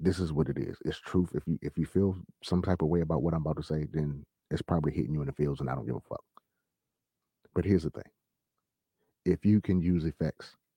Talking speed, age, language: 250 wpm, 30-49, English